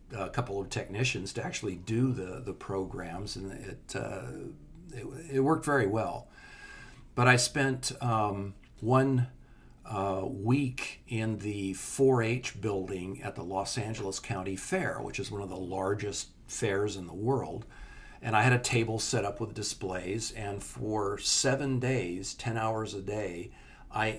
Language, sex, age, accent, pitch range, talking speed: English, male, 50-69, American, 100-130 Hz, 155 wpm